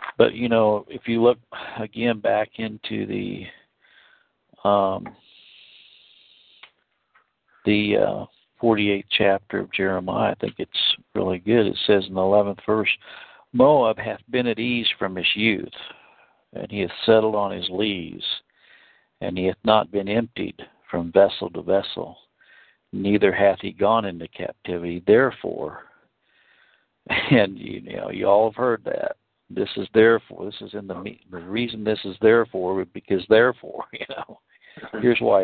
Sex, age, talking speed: male, 60-79, 145 wpm